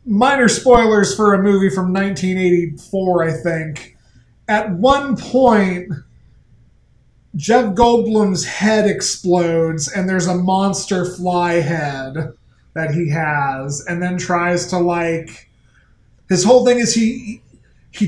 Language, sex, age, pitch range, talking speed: English, male, 20-39, 170-200 Hz, 120 wpm